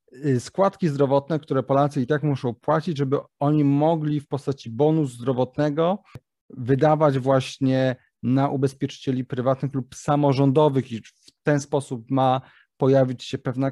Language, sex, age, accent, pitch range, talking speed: Polish, male, 30-49, native, 130-155 Hz, 130 wpm